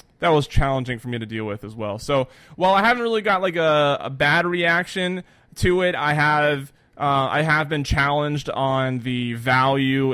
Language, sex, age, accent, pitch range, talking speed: English, male, 20-39, American, 125-145 Hz, 195 wpm